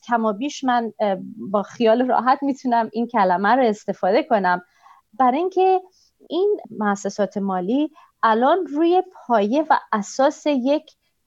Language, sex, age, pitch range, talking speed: Persian, female, 30-49, 195-275 Hz, 130 wpm